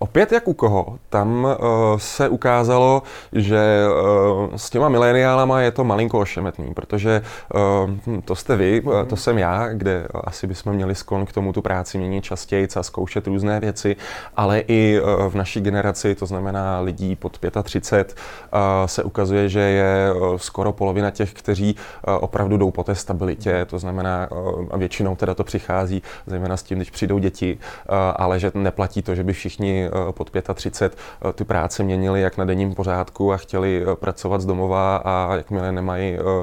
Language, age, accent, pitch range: Czech, 20-39, native, 95-105 Hz